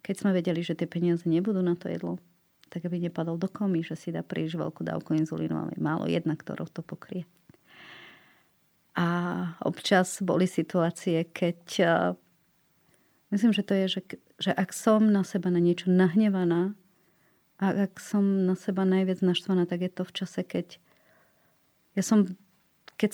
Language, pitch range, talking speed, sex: Slovak, 170-210 Hz, 165 wpm, female